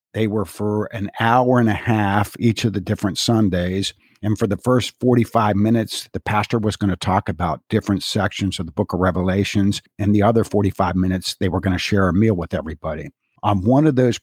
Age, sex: 50-69, male